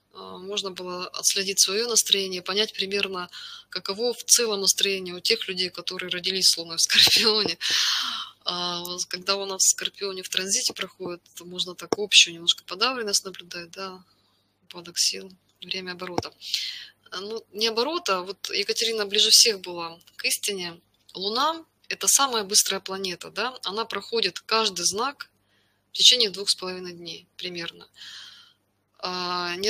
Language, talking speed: Russian, 130 wpm